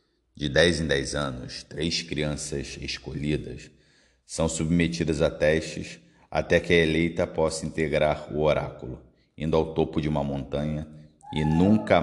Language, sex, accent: Portuguese, male, Brazilian